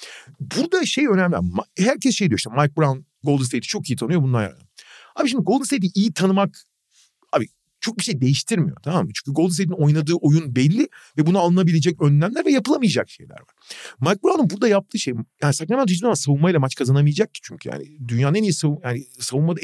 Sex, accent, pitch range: male, native, 150-210 Hz